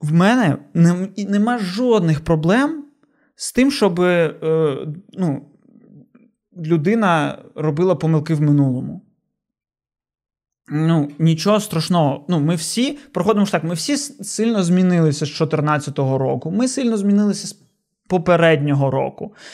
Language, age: Ukrainian, 20-39